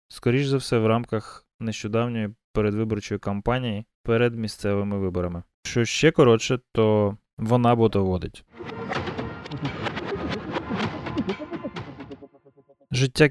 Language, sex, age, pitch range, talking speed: Ukrainian, male, 20-39, 105-120 Hz, 80 wpm